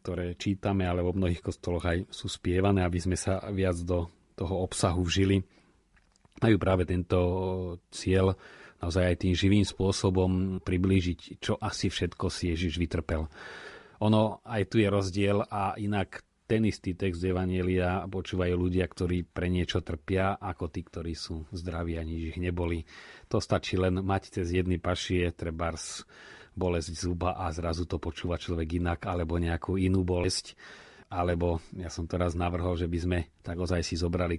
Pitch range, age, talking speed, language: 90-100 Hz, 30-49, 155 wpm, Slovak